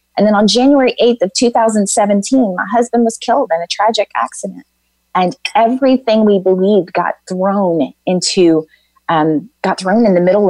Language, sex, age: English, female, 30-49